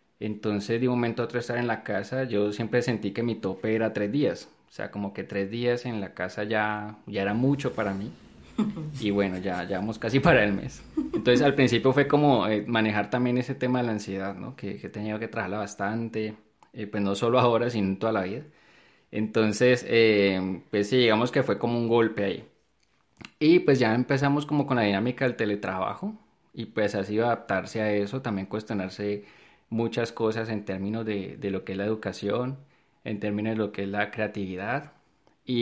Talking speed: 205 wpm